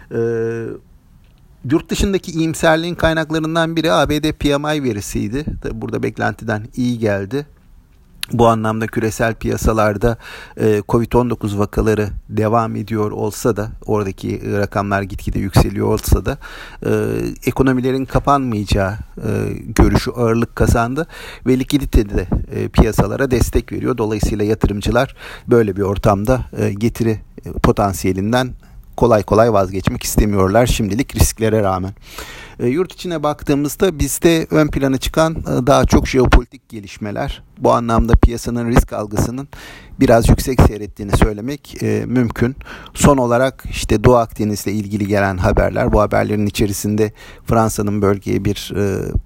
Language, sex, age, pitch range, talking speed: Turkish, male, 50-69, 105-130 Hz, 120 wpm